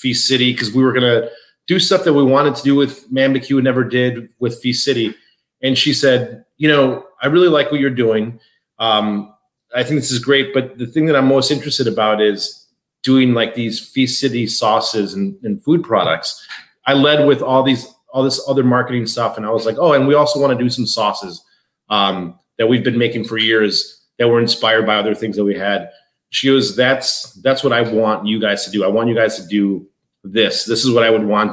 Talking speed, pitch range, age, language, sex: 230 wpm, 110-135 Hz, 30-49, English, male